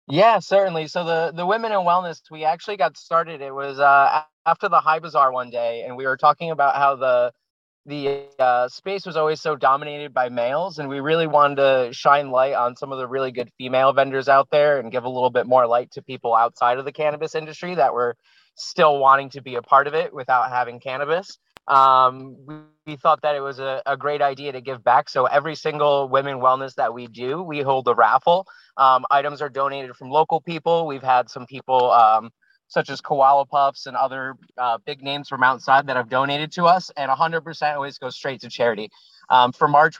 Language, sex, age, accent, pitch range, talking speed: English, male, 30-49, American, 130-155 Hz, 220 wpm